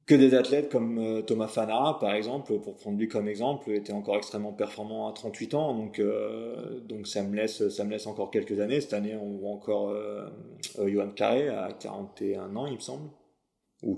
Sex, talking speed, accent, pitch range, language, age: male, 200 wpm, French, 105-115 Hz, French, 30-49